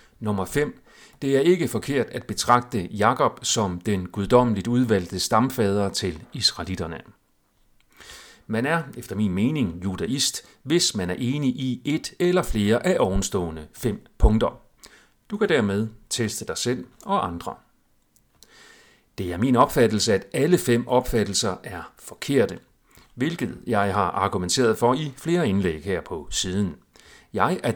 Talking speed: 140 wpm